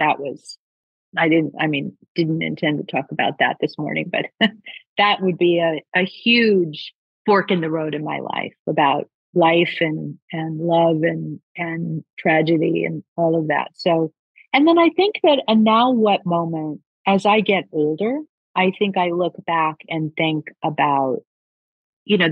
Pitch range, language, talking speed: 160-200 Hz, English, 170 wpm